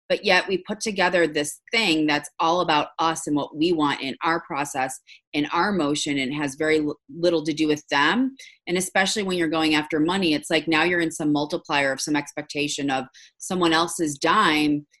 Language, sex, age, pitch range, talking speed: English, female, 30-49, 150-195 Hz, 200 wpm